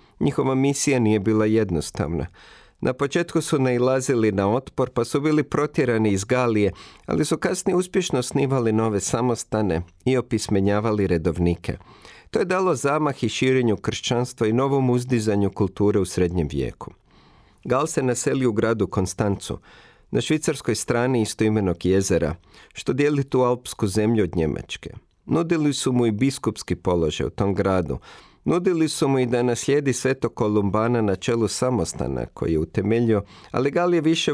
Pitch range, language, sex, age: 100-130 Hz, Croatian, male, 40-59